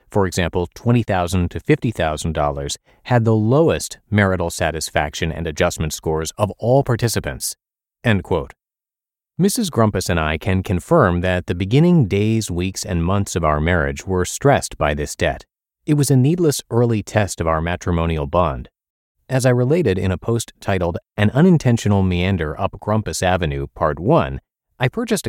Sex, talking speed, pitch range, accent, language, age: male, 155 wpm, 85-115 Hz, American, English, 30-49